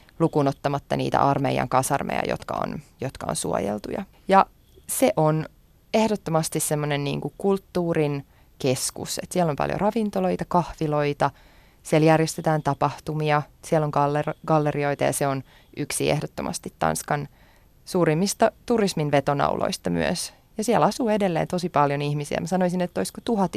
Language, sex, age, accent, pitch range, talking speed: Finnish, female, 20-39, native, 145-175 Hz, 135 wpm